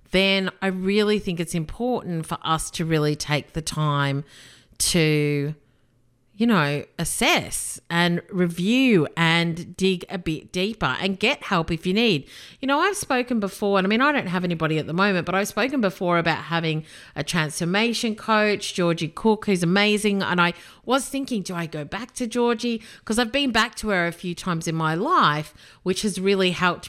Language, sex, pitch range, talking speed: English, female, 150-195 Hz, 185 wpm